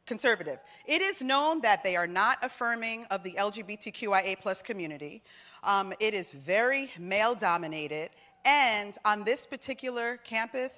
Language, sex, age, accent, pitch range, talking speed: English, female, 40-59, American, 195-285 Hz, 130 wpm